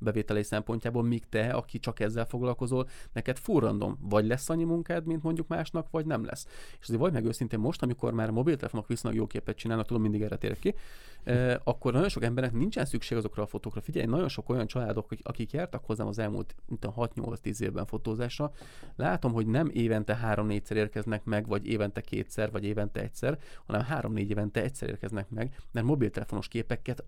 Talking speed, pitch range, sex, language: 190 wpm, 110-125 Hz, male, Hungarian